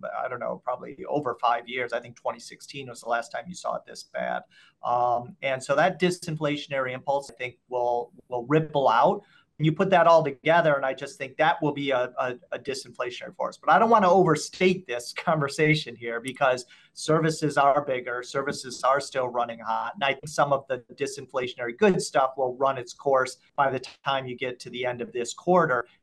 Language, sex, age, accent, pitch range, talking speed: English, male, 40-59, American, 130-160 Hz, 210 wpm